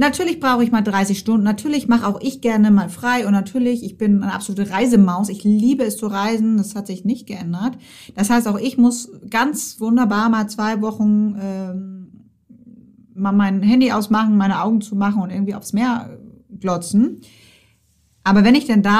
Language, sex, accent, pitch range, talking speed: German, female, German, 190-230 Hz, 185 wpm